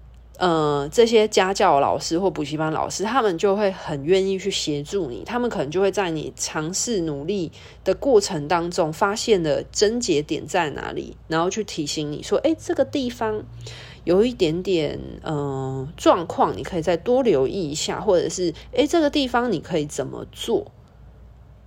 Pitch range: 150-215 Hz